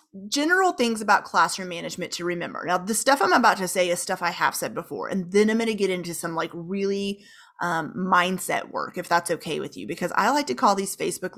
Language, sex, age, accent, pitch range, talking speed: English, female, 30-49, American, 175-220 Hz, 235 wpm